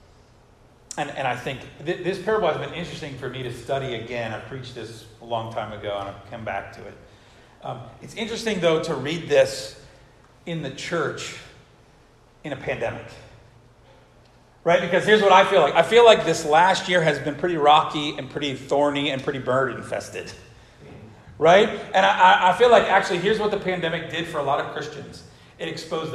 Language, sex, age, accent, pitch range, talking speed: English, male, 40-59, American, 120-170 Hz, 190 wpm